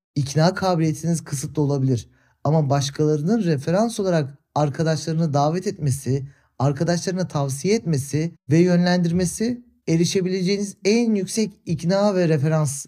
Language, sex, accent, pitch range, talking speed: Turkish, male, native, 150-200 Hz, 105 wpm